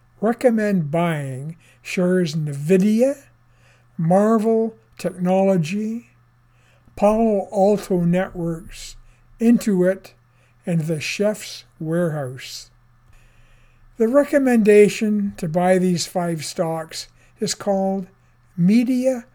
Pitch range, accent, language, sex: 135-205 Hz, American, English, male